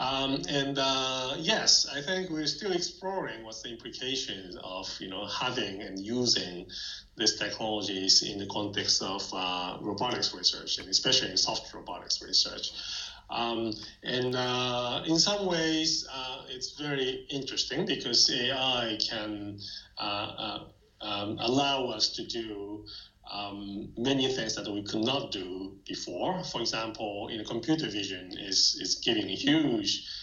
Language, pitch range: English, 100-140 Hz